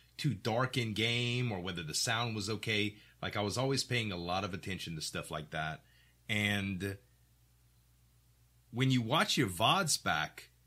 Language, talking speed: English, 170 wpm